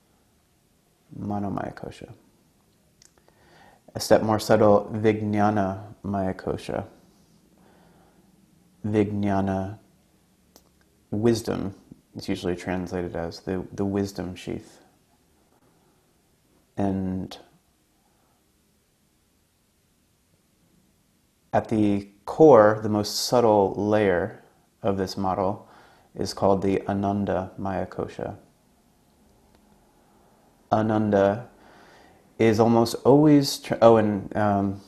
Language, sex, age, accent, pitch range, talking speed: English, male, 30-49, American, 95-110 Hz, 75 wpm